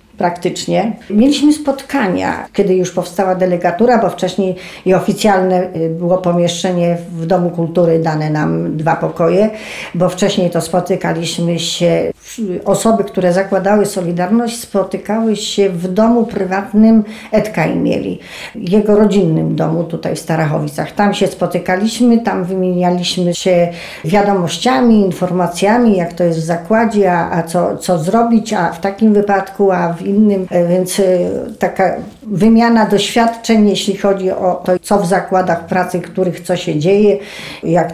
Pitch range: 170-205 Hz